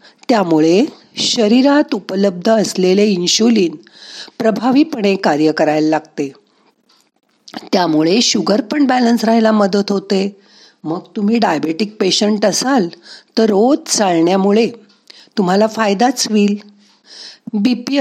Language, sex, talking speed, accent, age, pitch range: Marathi, female, 95 wpm, native, 50-69, 175-230 Hz